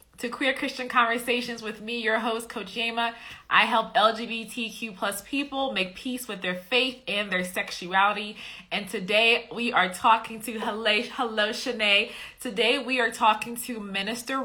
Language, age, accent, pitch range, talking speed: English, 20-39, American, 190-245 Hz, 160 wpm